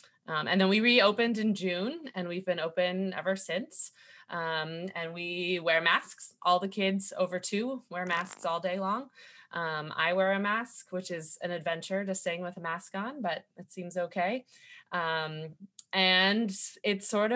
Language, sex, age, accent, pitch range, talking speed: English, female, 20-39, American, 175-215 Hz, 175 wpm